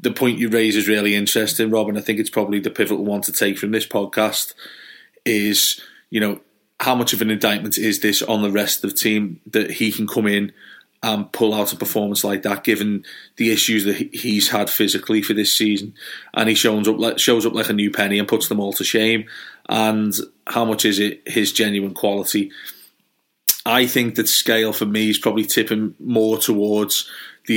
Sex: male